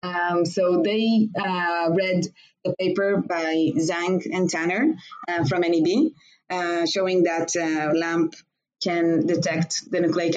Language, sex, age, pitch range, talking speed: English, female, 20-39, 165-195 Hz, 135 wpm